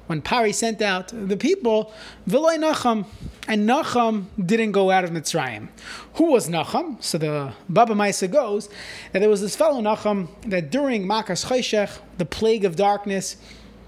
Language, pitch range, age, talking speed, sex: English, 185-235 Hz, 30-49, 160 wpm, male